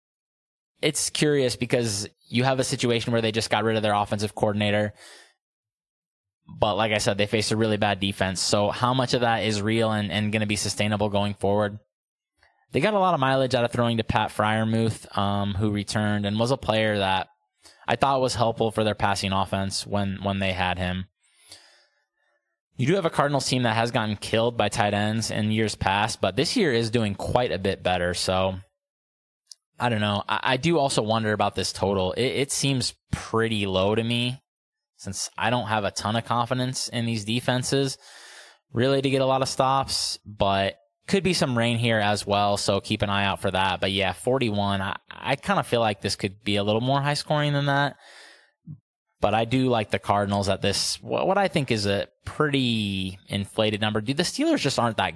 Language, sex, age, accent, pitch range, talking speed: English, male, 20-39, American, 100-125 Hz, 210 wpm